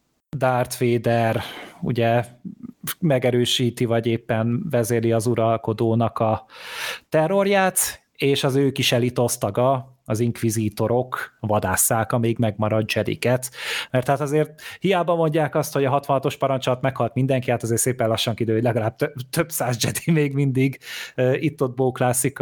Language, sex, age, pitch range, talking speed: Hungarian, male, 30-49, 115-135 Hz, 125 wpm